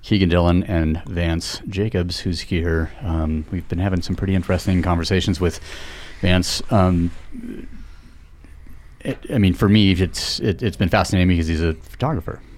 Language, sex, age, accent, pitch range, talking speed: English, male, 30-49, American, 85-95 Hz, 145 wpm